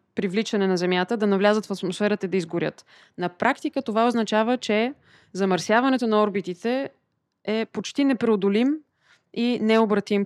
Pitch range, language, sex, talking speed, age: 190-230 Hz, Bulgarian, female, 135 wpm, 20-39